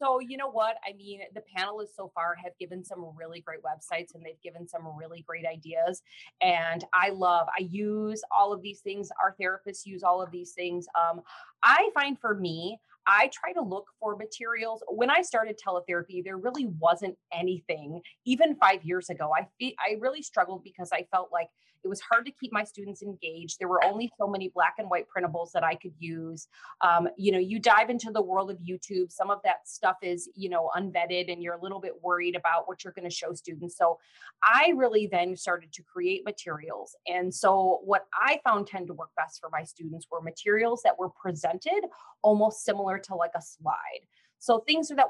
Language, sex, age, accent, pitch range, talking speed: English, female, 30-49, American, 175-215 Hz, 210 wpm